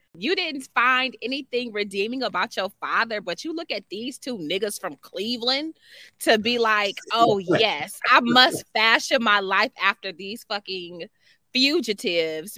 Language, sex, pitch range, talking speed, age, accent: English, female, 190-280 Hz, 150 wpm, 20-39, American